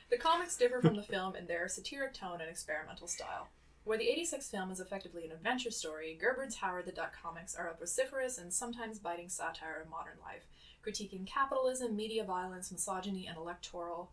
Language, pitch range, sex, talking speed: English, 170-215 Hz, female, 185 wpm